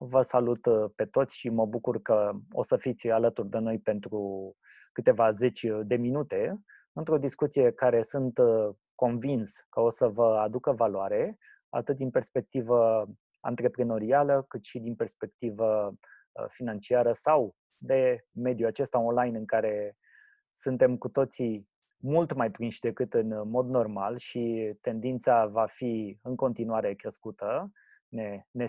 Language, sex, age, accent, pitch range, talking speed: Romanian, male, 20-39, native, 115-135 Hz, 135 wpm